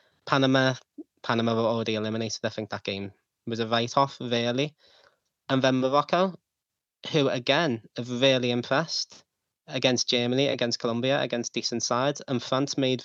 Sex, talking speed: male, 140 wpm